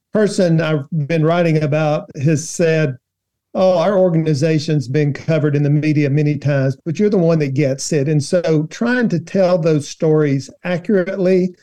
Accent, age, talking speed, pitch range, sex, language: American, 50-69, 165 wpm, 150-180 Hz, male, English